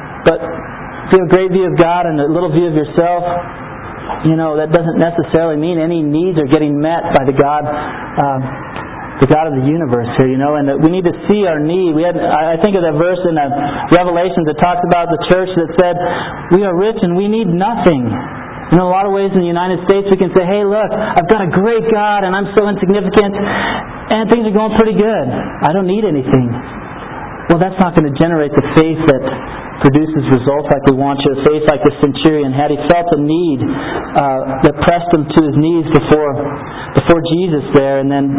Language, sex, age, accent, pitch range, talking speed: English, male, 40-59, American, 145-180 Hz, 220 wpm